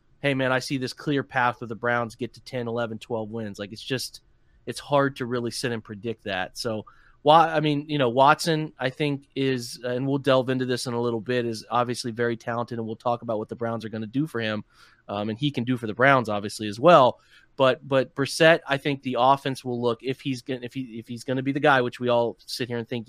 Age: 30-49